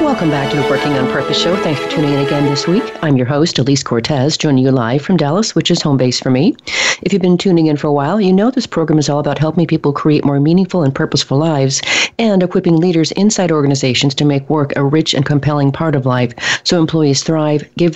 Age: 40-59